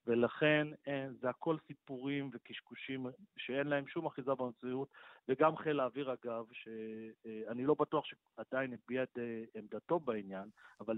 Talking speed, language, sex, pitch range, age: 125 wpm, Hebrew, male, 115-140 Hz, 40-59